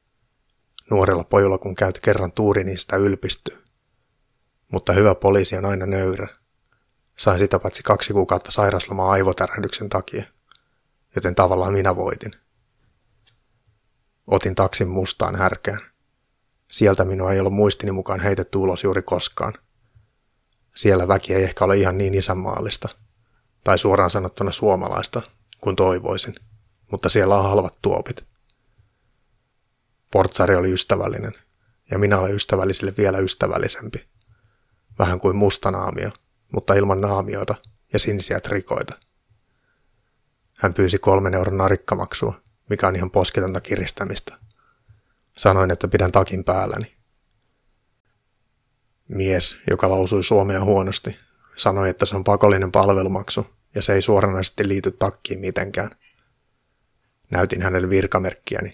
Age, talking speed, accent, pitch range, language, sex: 30-49, 115 wpm, native, 95-110 Hz, Finnish, male